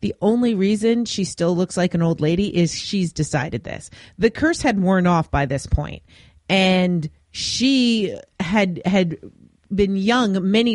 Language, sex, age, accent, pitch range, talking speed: English, female, 30-49, American, 160-225 Hz, 160 wpm